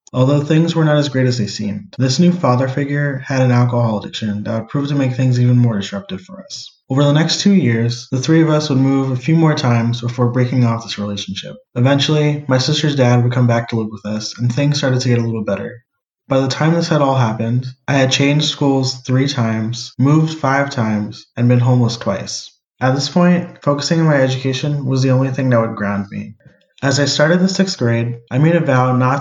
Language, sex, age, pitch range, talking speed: English, male, 20-39, 120-145 Hz, 230 wpm